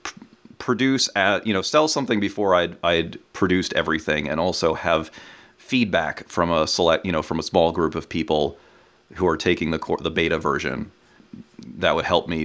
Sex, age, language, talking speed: male, 30-49, English, 185 wpm